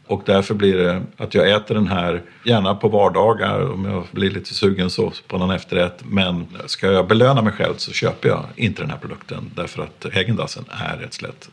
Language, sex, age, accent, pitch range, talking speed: Swedish, male, 50-69, native, 95-115 Hz, 210 wpm